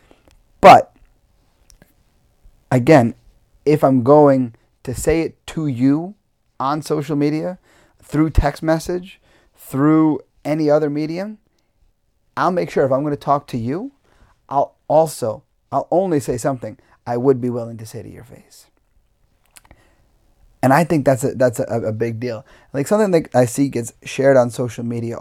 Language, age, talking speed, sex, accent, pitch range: English, 30-49, 155 wpm, male, American, 115-150 Hz